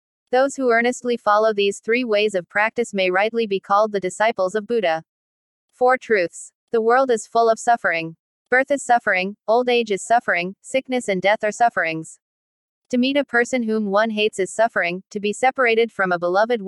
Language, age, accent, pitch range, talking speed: English, 40-59, American, 190-235 Hz, 185 wpm